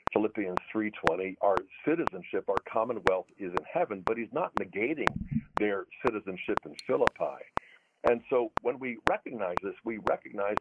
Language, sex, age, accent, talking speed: English, male, 60-79, American, 140 wpm